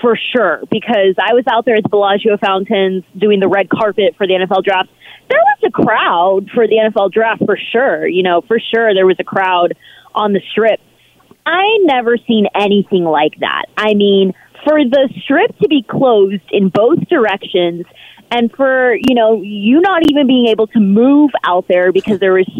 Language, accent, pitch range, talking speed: English, American, 195-295 Hz, 190 wpm